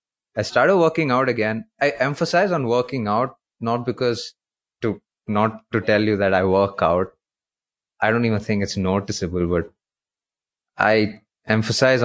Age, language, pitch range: 20-39, English, 100-120 Hz